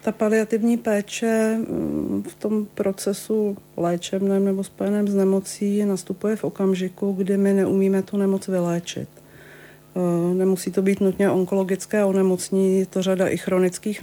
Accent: native